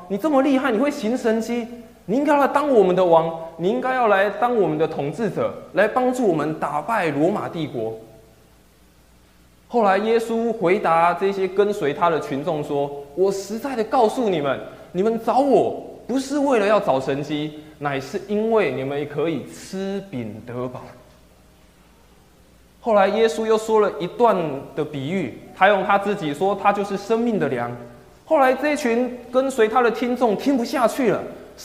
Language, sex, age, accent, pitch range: Chinese, male, 20-39, native, 150-250 Hz